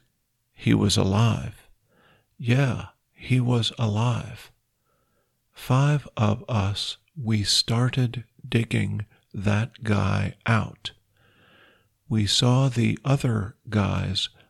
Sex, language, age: male, Thai, 50-69